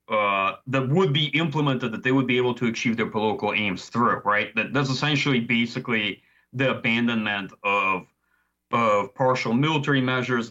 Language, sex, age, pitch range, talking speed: English, male, 30-49, 115-145 Hz, 160 wpm